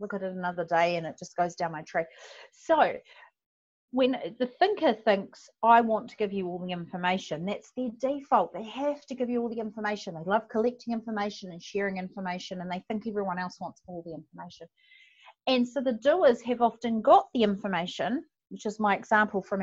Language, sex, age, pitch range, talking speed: English, female, 30-49, 195-265 Hz, 200 wpm